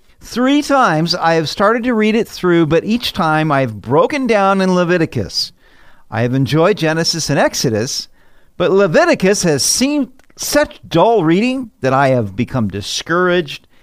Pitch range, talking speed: 125-200 Hz, 150 wpm